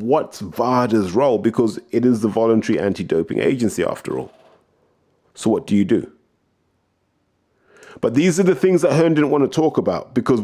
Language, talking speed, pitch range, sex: English, 170 wpm, 100-140 Hz, male